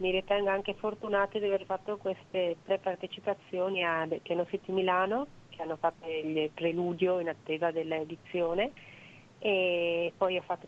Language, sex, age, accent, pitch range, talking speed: Italian, female, 30-49, native, 180-205 Hz, 145 wpm